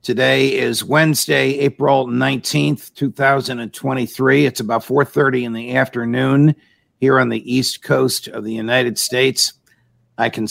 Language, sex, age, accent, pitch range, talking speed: English, male, 50-69, American, 115-140 Hz, 130 wpm